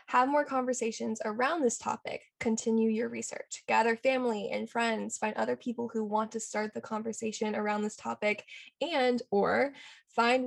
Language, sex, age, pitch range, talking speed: English, female, 10-29, 220-245 Hz, 160 wpm